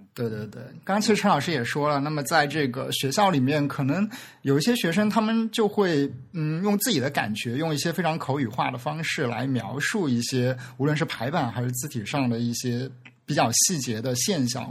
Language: Chinese